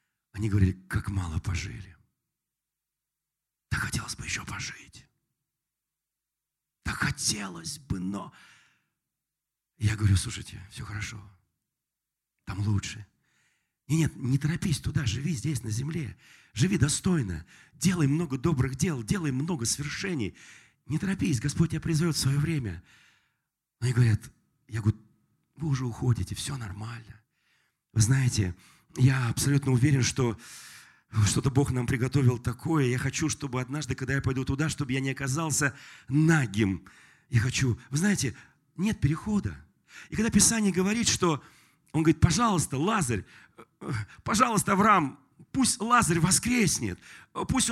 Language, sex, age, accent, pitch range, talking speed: Russian, male, 40-59, native, 115-175 Hz, 130 wpm